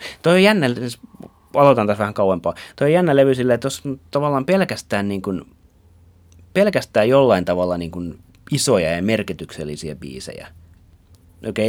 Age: 30-49